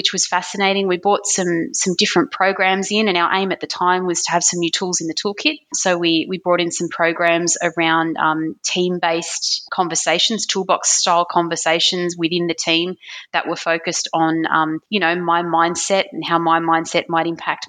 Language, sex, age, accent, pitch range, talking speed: English, female, 20-39, Australian, 165-180 Hz, 190 wpm